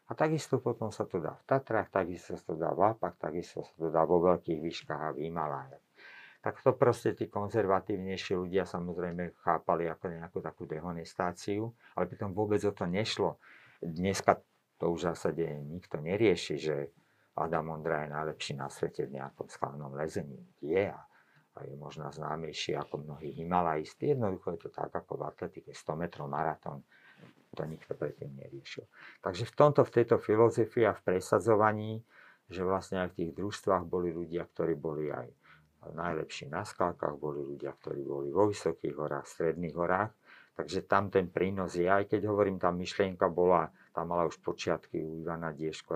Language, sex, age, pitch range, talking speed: Slovak, male, 50-69, 80-100 Hz, 175 wpm